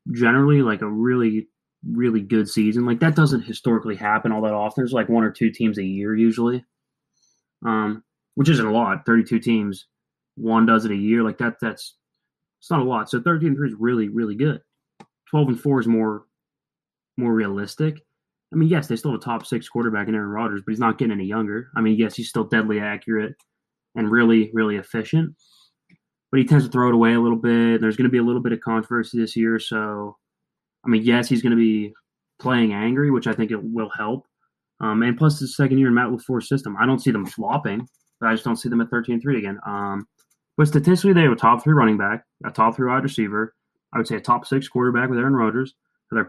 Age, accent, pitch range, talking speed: 20-39, American, 110-125 Hz, 225 wpm